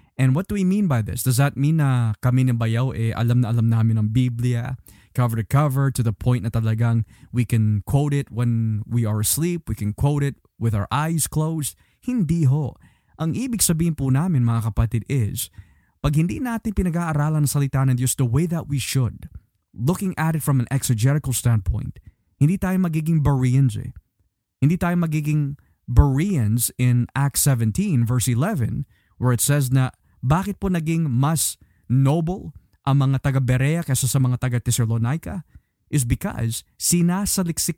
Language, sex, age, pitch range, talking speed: Filipino, male, 20-39, 115-155 Hz, 170 wpm